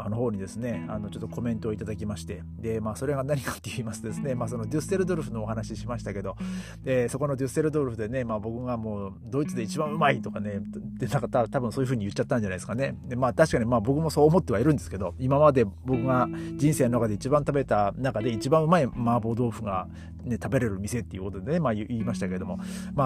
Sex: male